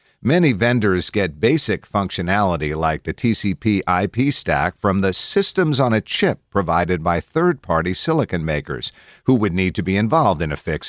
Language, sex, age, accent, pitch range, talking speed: English, male, 50-69, American, 90-130 Hz, 165 wpm